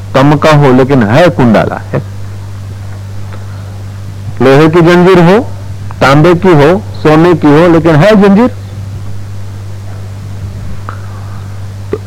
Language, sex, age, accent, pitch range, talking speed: Hindi, male, 50-69, native, 100-160 Hz, 105 wpm